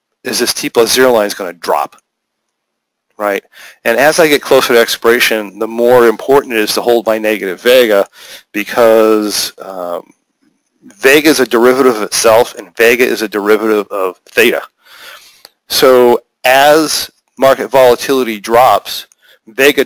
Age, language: 40-59, English